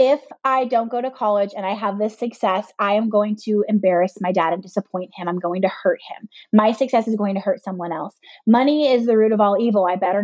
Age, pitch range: 20-39, 210-275 Hz